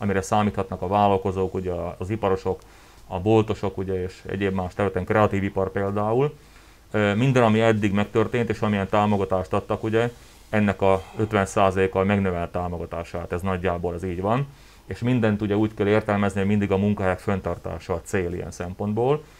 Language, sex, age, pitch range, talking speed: Hungarian, male, 30-49, 95-110 Hz, 160 wpm